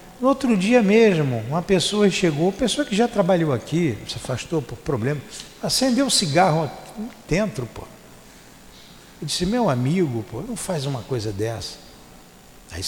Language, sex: Portuguese, male